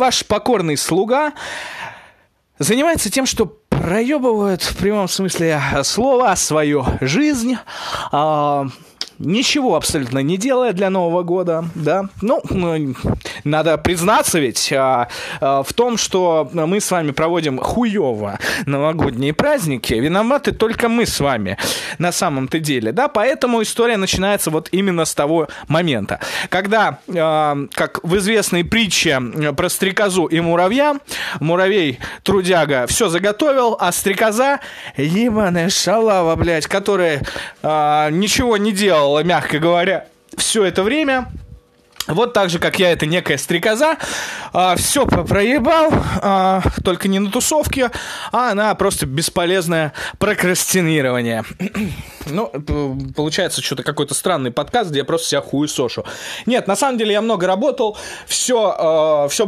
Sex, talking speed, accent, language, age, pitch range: male, 125 wpm, native, Russian, 20-39, 155-220 Hz